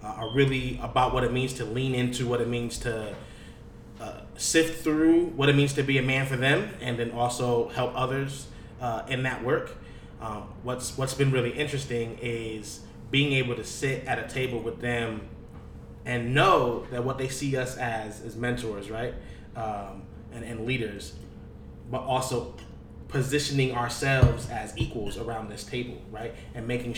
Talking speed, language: 175 wpm, English